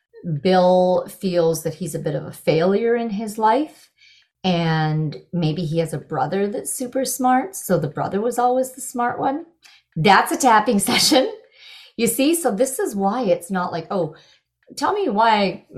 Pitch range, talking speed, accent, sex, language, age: 165-225 Hz, 180 wpm, American, female, English, 40-59